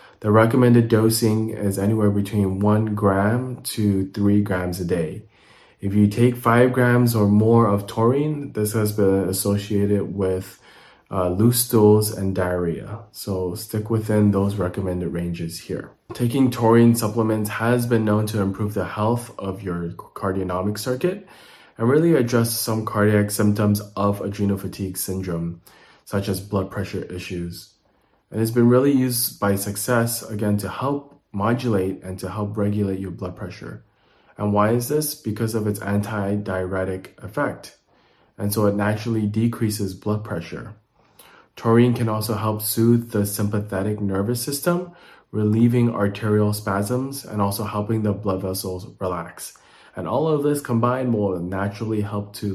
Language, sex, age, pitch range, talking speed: English, male, 20-39, 100-115 Hz, 150 wpm